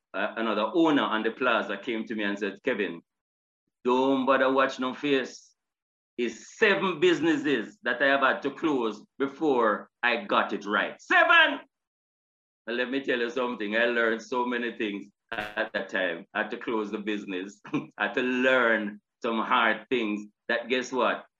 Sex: male